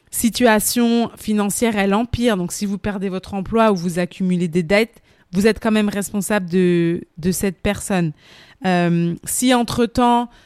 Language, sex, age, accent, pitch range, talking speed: French, female, 20-39, French, 185-225 Hz, 155 wpm